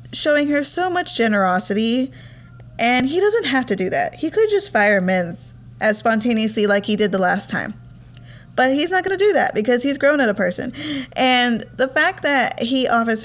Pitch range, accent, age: 200-265 Hz, American, 20-39